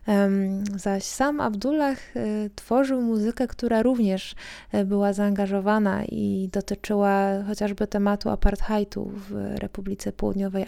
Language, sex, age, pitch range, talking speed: Polish, female, 20-39, 200-240 Hz, 95 wpm